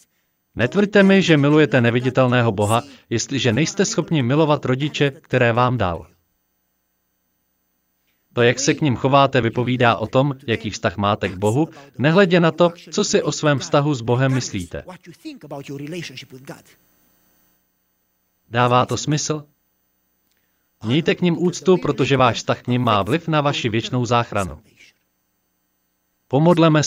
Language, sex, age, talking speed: Slovak, male, 40-59, 130 wpm